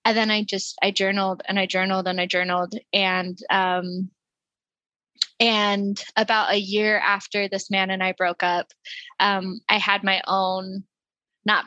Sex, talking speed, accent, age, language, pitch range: female, 160 wpm, American, 10-29, English, 190-210 Hz